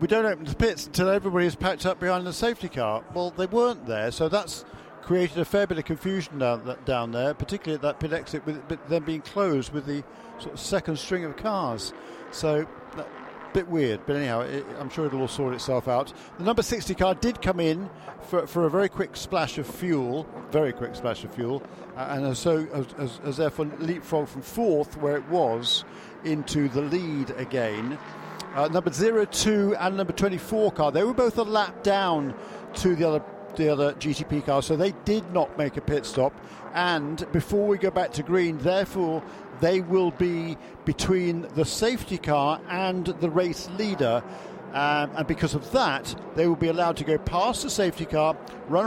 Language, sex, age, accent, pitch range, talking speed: English, male, 50-69, British, 145-185 Hz, 195 wpm